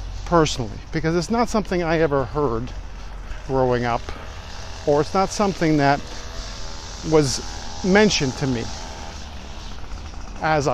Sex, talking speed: male, 110 wpm